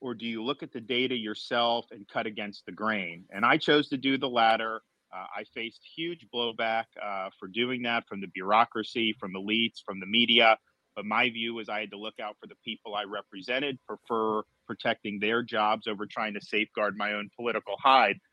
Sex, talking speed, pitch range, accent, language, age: male, 210 wpm, 115-150 Hz, American, English, 40-59